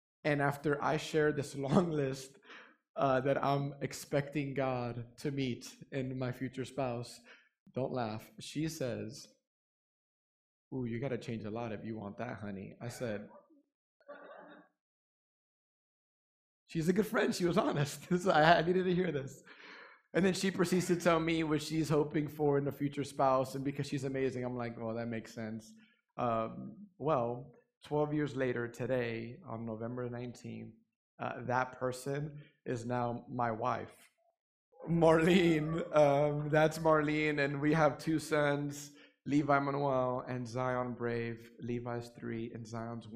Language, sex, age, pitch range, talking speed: English, male, 30-49, 125-155 Hz, 150 wpm